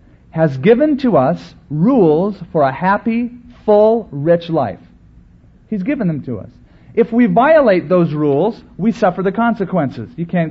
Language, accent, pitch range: English, American, 140-220 Hz